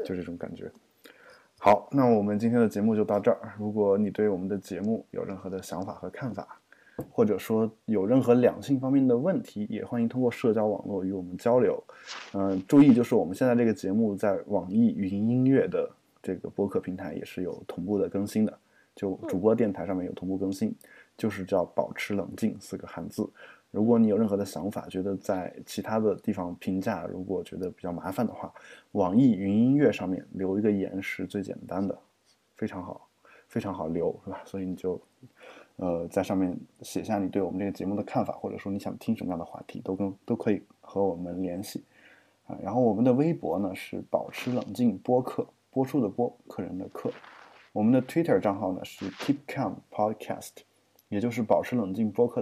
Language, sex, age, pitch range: Chinese, male, 20-39, 95-120 Hz